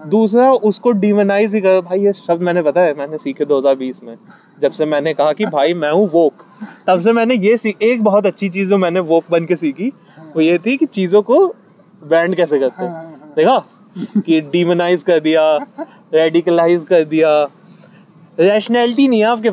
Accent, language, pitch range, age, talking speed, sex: native, Hindi, 175-240 Hz, 20-39, 35 wpm, male